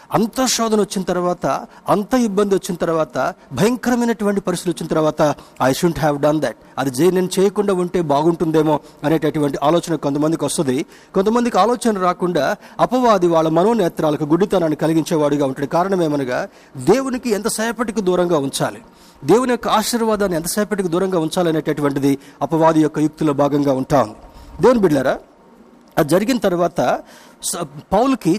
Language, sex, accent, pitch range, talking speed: Telugu, male, native, 155-215 Hz, 125 wpm